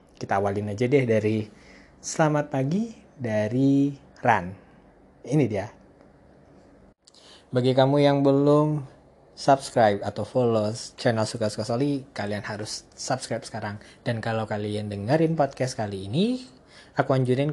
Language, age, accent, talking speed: Indonesian, 20-39, native, 115 wpm